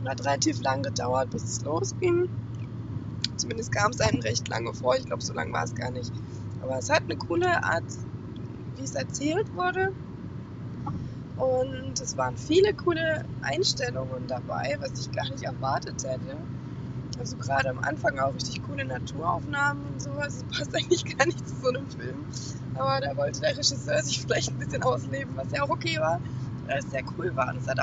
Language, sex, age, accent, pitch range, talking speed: German, female, 20-39, German, 125-135 Hz, 190 wpm